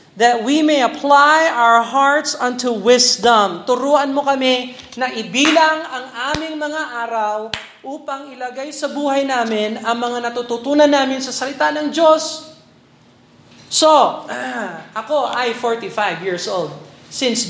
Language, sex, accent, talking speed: Filipino, male, native, 130 wpm